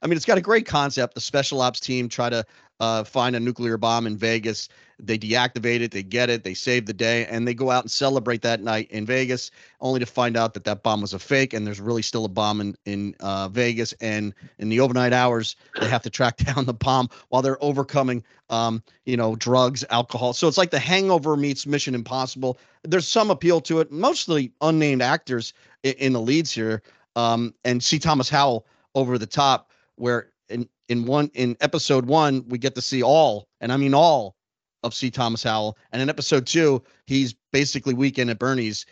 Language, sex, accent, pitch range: English, male, American, 115-140 Hz